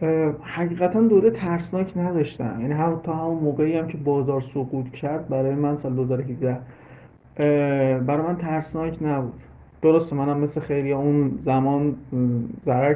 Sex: male